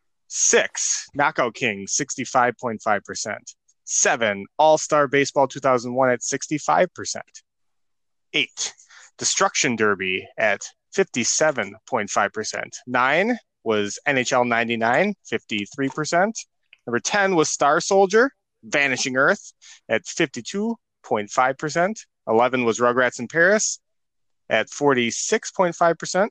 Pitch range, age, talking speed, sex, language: 125-185 Hz, 30-49, 80 wpm, male, English